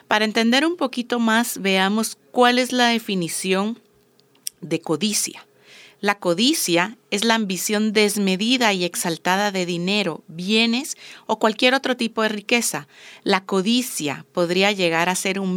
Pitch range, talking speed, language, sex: 180-230 Hz, 140 wpm, Spanish, female